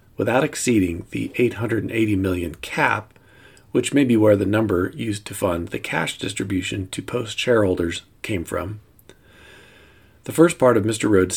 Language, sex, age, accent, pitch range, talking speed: English, male, 40-59, American, 95-120 Hz, 155 wpm